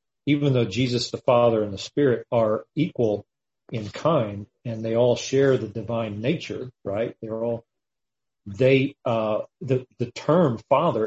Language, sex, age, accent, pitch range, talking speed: English, male, 40-59, American, 115-135 Hz, 150 wpm